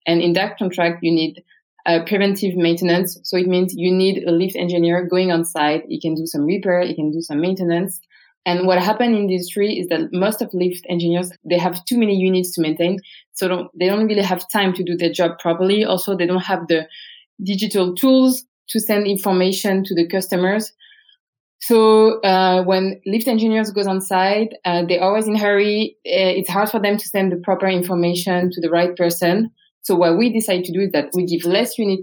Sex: female